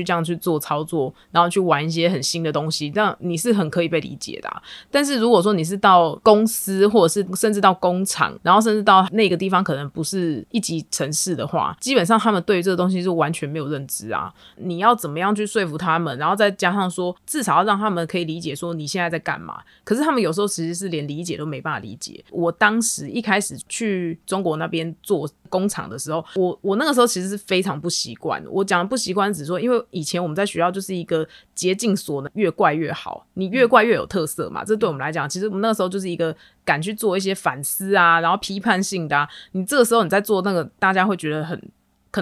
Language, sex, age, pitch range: Chinese, female, 20-39, 165-210 Hz